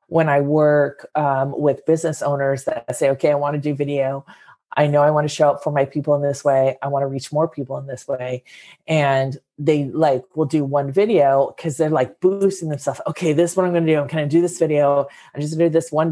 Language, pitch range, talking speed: English, 140-165 Hz, 255 wpm